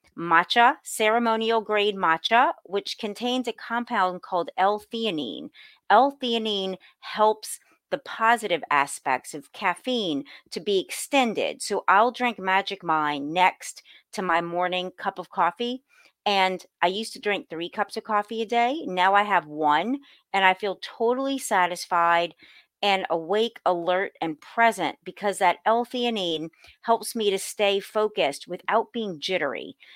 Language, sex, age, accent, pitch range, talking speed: English, female, 40-59, American, 180-235 Hz, 140 wpm